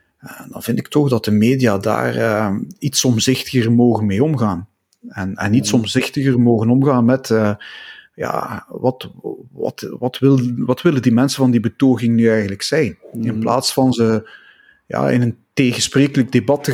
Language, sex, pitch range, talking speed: Dutch, male, 110-130 Hz, 155 wpm